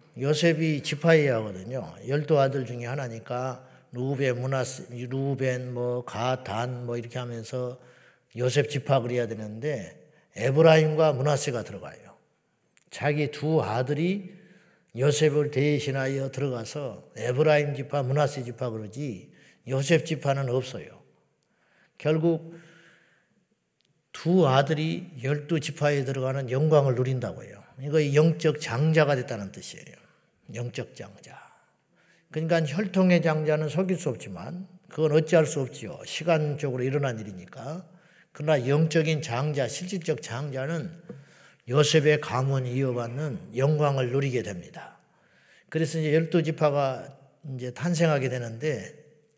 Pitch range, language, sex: 130-160 Hz, Korean, male